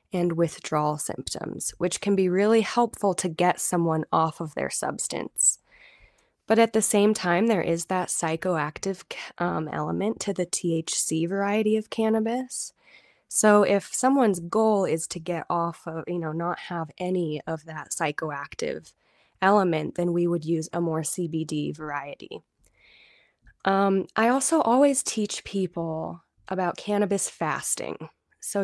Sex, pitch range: female, 165-215 Hz